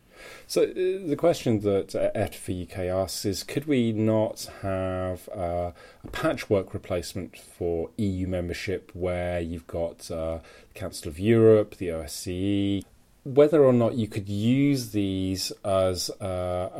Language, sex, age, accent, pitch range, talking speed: English, male, 40-59, British, 85-110 Hz, 130 wpm